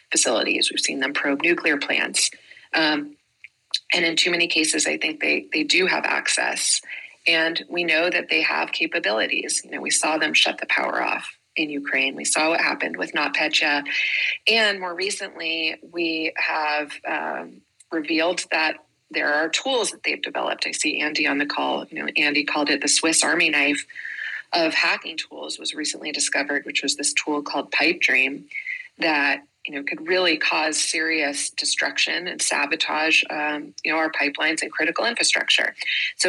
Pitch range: 145-175 Hz